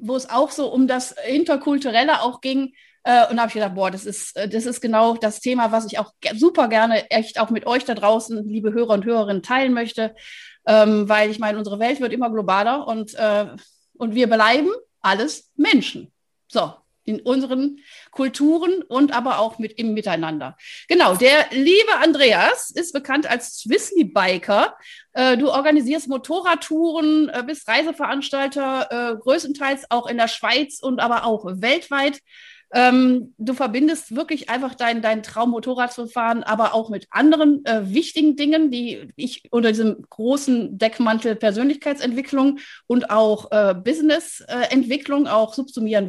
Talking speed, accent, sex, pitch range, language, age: 150 wpm, German, female, 220-285 Hz, German, 30-49